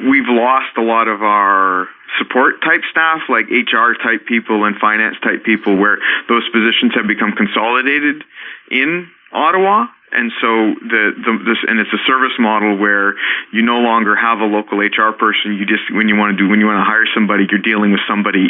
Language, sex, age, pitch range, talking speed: English, male, 40-59, 105-120 Hz, 200 wpm